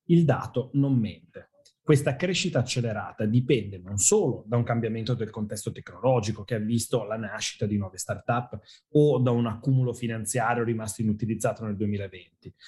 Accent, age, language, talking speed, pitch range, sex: native, 30-49, Italian, 155 wpm, 115-140 Hz, male